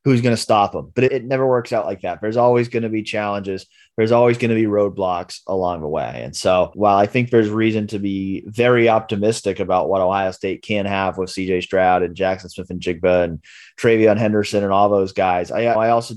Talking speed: 230 wpm